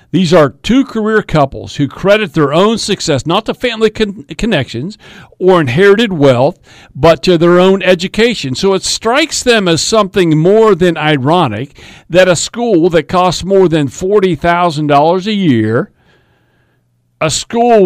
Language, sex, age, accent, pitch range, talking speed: English, male, 50-69, American, 150-200 Hz, 150 wpm